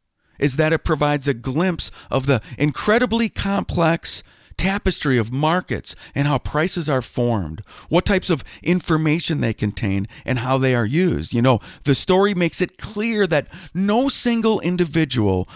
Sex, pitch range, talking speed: male, 120-180 Hz, 155 wpm